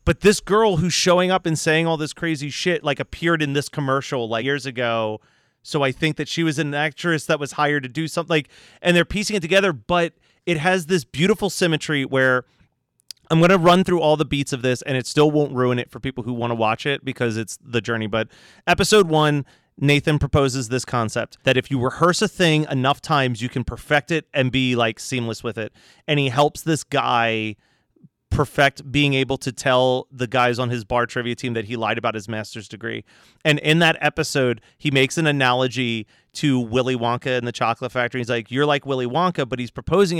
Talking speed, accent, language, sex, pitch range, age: 220 wpm, American, English, male, 125-155 Hz, 30-49